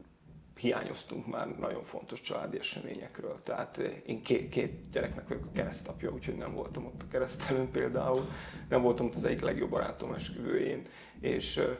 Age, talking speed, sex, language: 30-49, 155 wpm, male, Hungarian